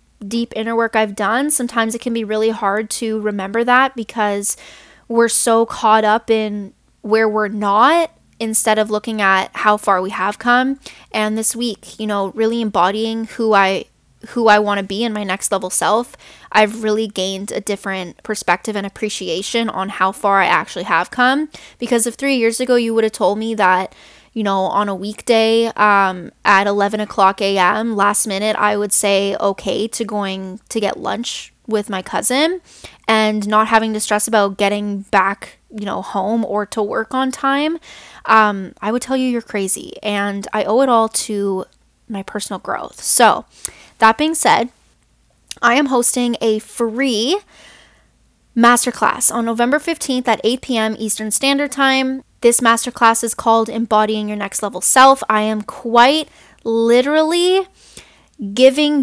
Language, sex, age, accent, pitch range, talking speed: English, female, 10-29, American, 205-240 Hz, 170 wpm